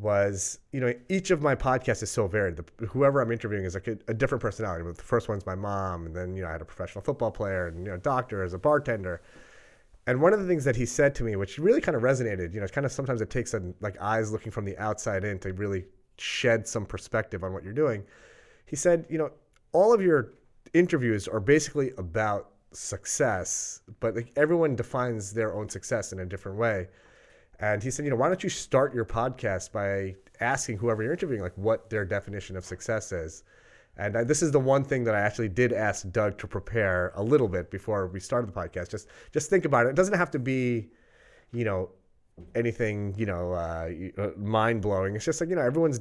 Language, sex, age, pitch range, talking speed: English, male, 30-49, 95-125 Hz, 230 wpm